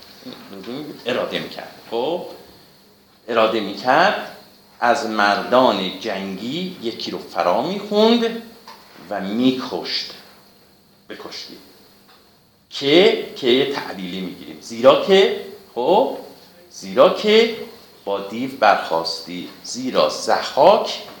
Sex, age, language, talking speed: male, 50-69, Persian, 90 wpm